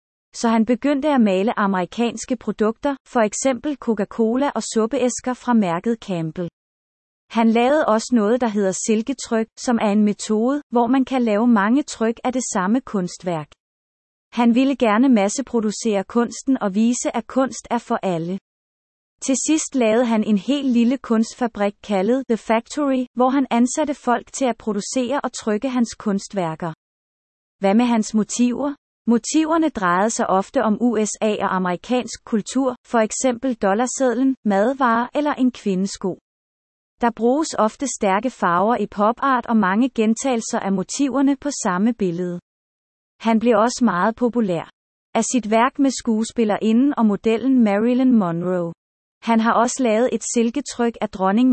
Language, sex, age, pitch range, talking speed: Danish, female, 30-49, 210-255 Hz, 150 wpm